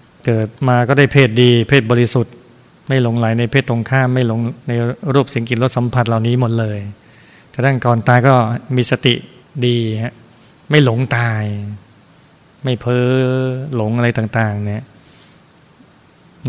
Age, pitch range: 20-39, 115-130 Hz